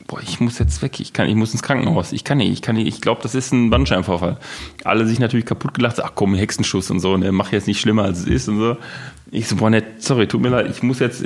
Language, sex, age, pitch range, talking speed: German, male, 30-49, 110-135 Hz, 290 wpm